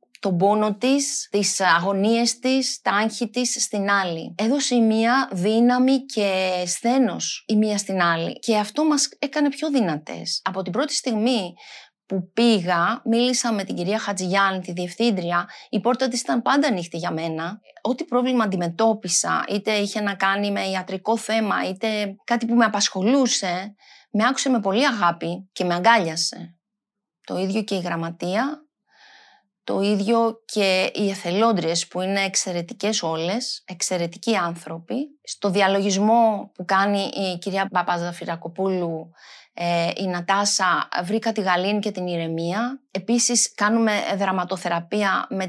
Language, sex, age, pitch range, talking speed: Greek, female, 30-49, 185-235 Hz, 140 wpm